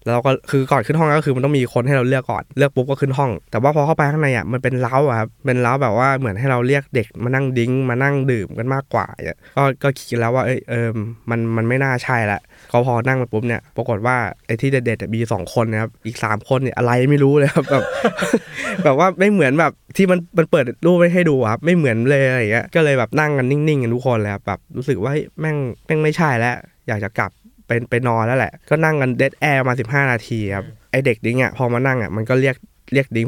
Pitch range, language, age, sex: 115-140 Hz, Thai, 20-39, male